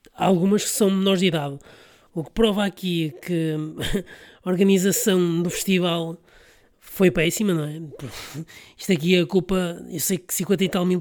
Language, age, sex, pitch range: Portuguese, 20-39, male, 165-195 Hz